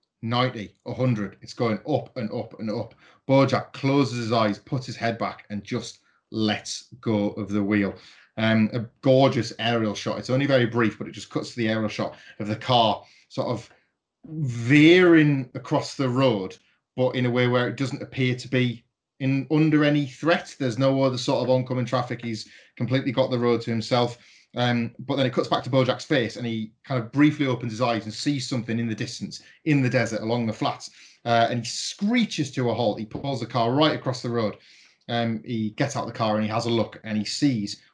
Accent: British